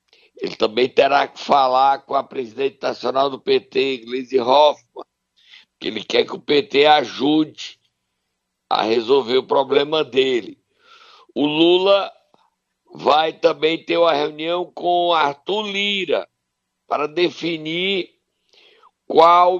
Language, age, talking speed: Portuguese, 60-79, 115 wpm